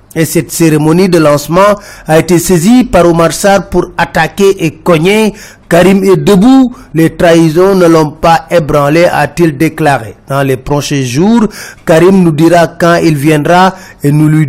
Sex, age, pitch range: male, 30-49, 155-185 Hz